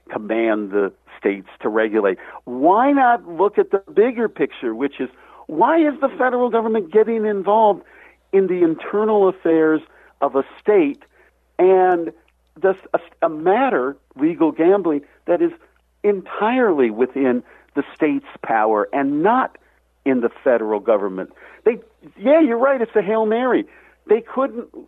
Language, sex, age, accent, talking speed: English, male, 50-69, American, 135 wpm